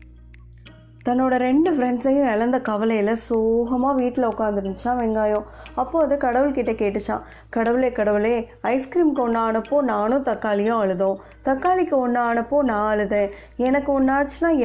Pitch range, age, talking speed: 210-260 Hz, 20-39, 115 wpm